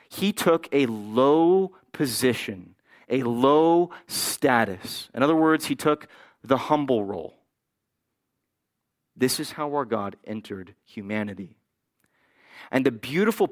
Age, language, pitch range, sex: 30-49, English, 120-175 Hz, male